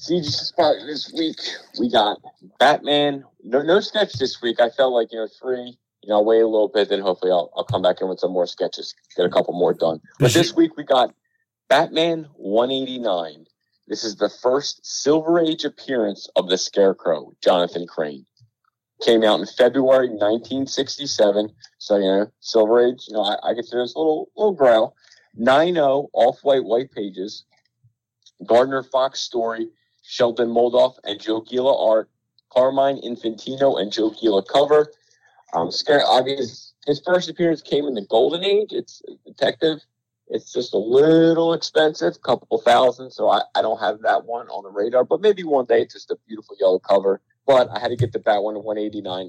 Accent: American